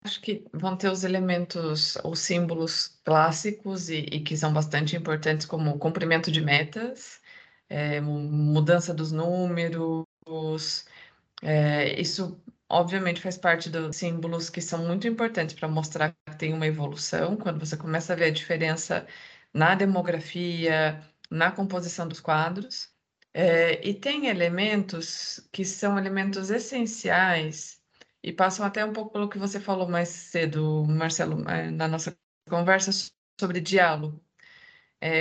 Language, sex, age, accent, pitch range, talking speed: Portuguese, female, 20-39, Brazilian, 160-195 Hz, 135 wpm